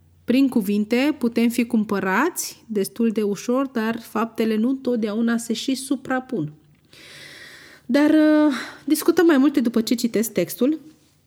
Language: Romanian